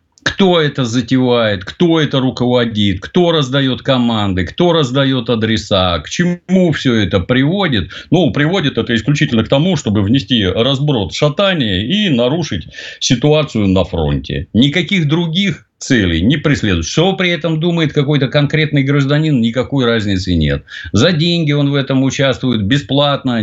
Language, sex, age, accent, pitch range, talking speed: Russian, male, 50-69, native, 100-155 Hz, 140 wpm